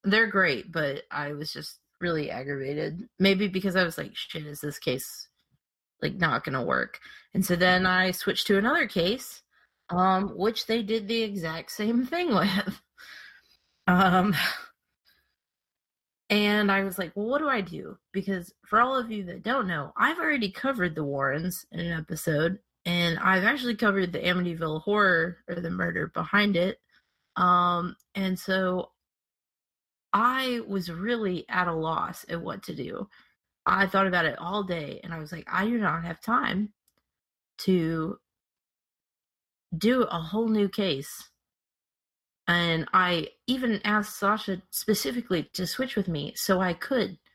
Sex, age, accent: female, 20-39, American